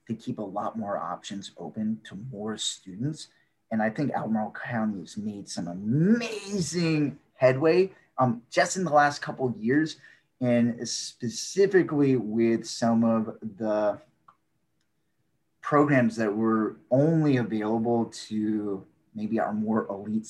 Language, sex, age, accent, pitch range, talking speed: English, male, 30-49, American, 110-145 Hz, 130 wpm